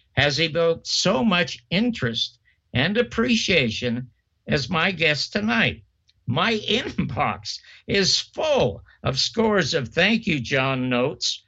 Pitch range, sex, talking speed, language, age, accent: 120-190 Hz, male, 120 wpm, English, 60-79, American